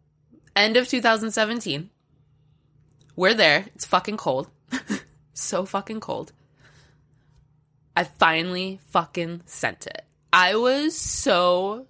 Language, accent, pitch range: English, American, 150-235 Hz